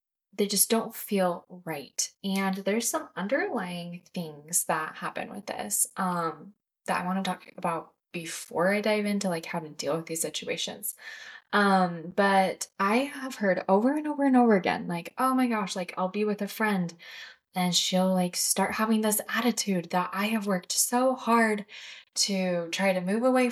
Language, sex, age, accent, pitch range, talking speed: English, female, 10-29, American, 175-230 Hz, 180 wpm